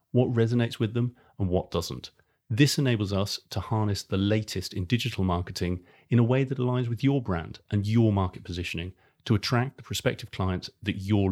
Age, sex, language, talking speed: 30-49, male, English, 190 wpm